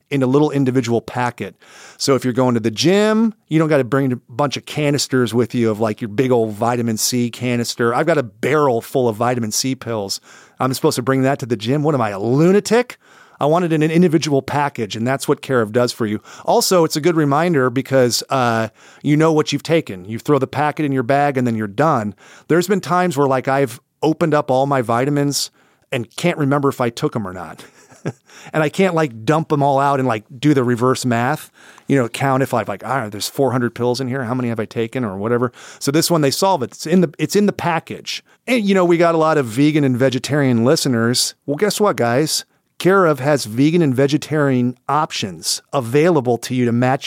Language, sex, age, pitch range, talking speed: English, male, 40-59, 125-155 Hz, 235 wpm